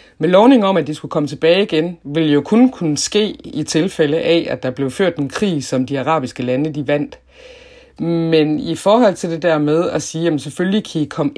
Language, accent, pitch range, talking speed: Danish, native, 140-175 Hz, 225 wpm